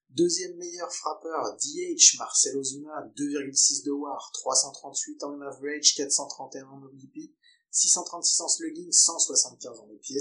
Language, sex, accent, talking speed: French, male, French, 110 wpm